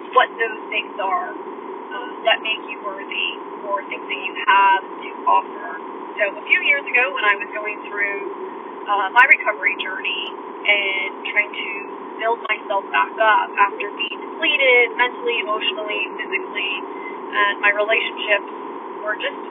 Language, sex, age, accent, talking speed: English, female, 30-49, American, 150 wpm